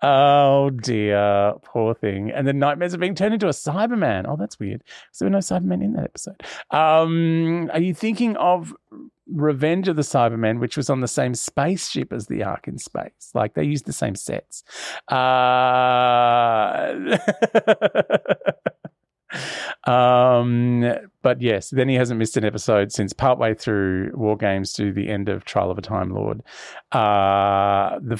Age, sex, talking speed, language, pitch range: 30-49, male, 160 wpm, English, 105-150 Hz